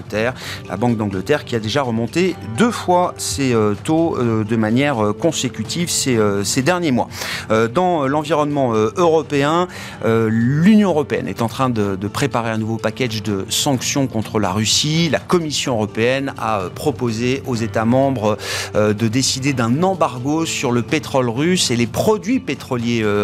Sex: male